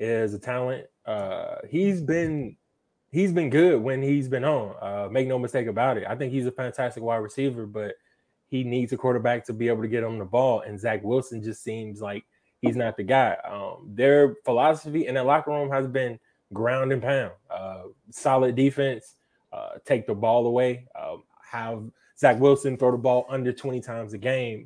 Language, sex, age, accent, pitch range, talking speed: English, male, 20-39, American, 110-140 Hz, 195 wpm